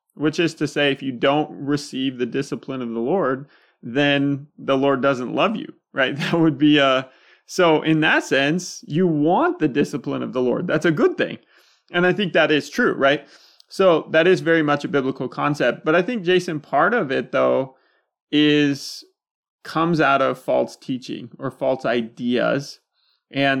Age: 20-39